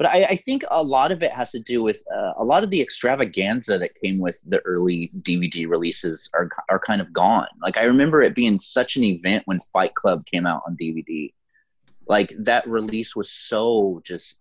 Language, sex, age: English, male, 30-49